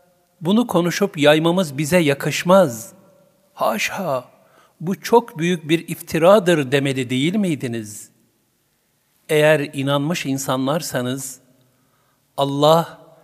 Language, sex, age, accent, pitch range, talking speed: Turkish, male, 60-79, native, 130-165 Hz, 80 wpm